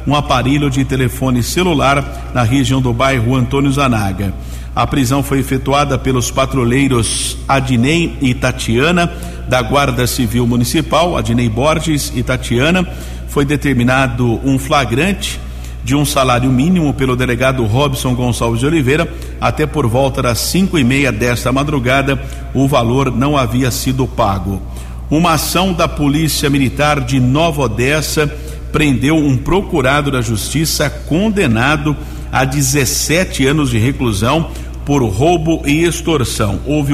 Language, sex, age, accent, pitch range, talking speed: Portuguese, male, 50-69, Brazilian, 125-150 Hz, 130 wpm